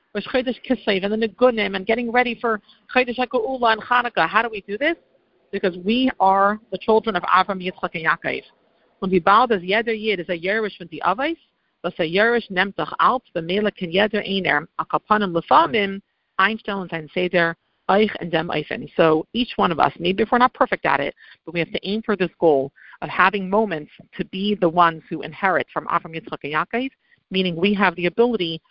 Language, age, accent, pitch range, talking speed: English, 50-69, American, 165-220 Hz, 200 wpm